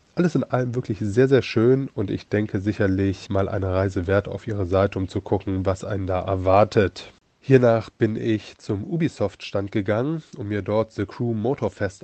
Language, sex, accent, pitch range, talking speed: German, male, German, 100-125 Hz, 185 wpm